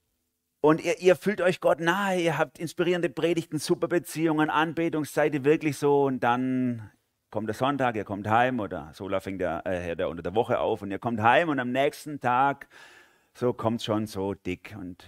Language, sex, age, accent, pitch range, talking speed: German, male, 30-49, German, 95-125 Hz, 185 wpm